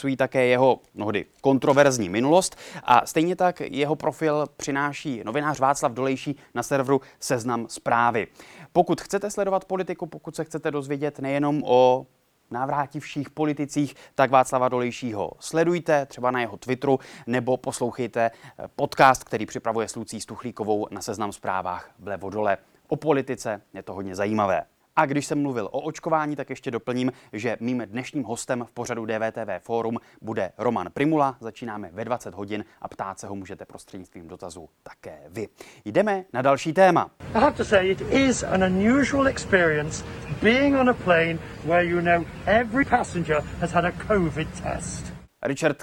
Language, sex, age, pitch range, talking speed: Czech, male, 20-39, 120-160 Hz, 125 wpm